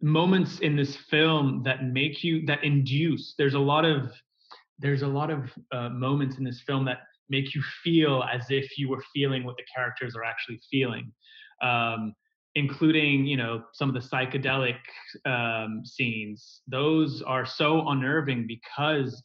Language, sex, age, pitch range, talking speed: English, male, 20-39, 120-145 Hz, 160 wpm